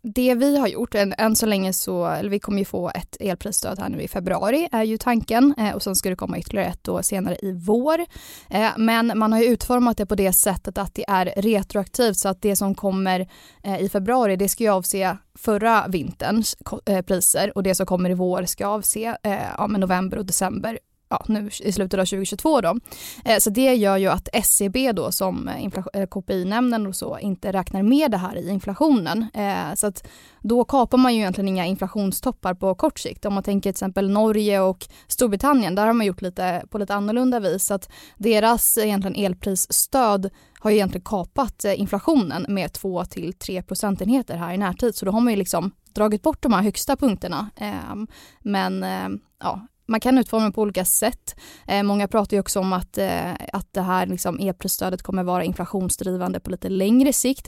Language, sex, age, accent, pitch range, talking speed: Swedish, female, 20-39, native, 190-225 Hz, 195 wpm